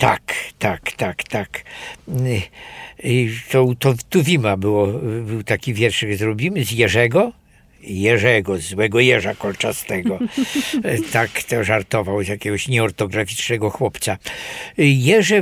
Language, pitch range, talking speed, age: Polish, 110-145 Hz, 95 wpm, 60-79